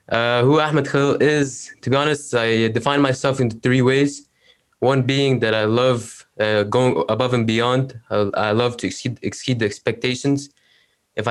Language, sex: English, male